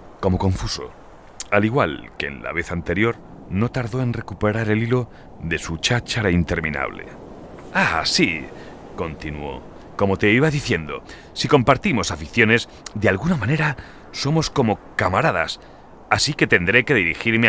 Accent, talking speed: Spanish, 135 wpm